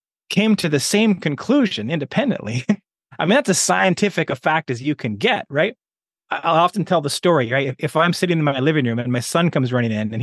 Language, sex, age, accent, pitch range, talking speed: English, male, 30-49, American, 130-180 Hz, 225 wpm